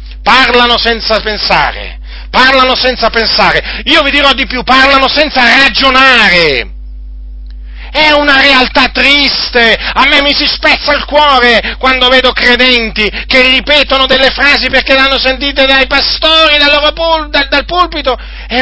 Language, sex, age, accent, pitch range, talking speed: Italian, male, 40-59, native, 185-265 Hz, 140 wpm